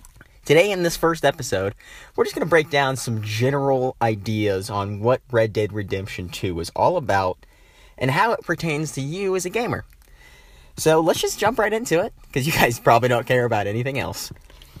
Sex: male